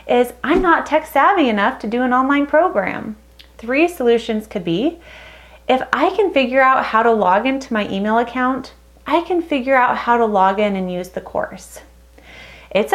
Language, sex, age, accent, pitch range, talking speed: English, female, 30-49, American, 205-280 Hz, 185 wpm